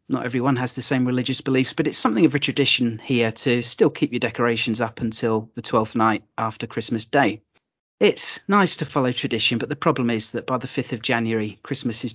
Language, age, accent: English, 40-59, British